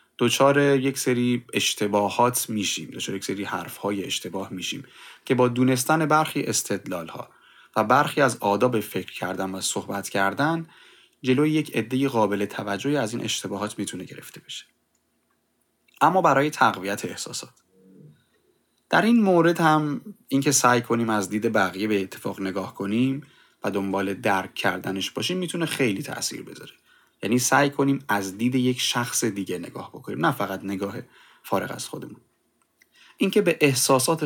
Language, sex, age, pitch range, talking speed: Persian, male, 30-49, 100-135 Hz, 145 wpm